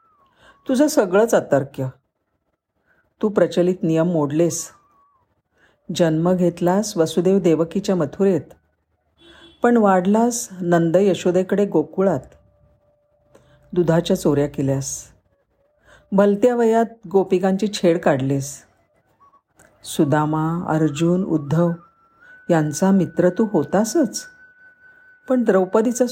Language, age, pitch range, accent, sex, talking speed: Marathi, 50-69, 160-230 Hz, native, female, 80 wpm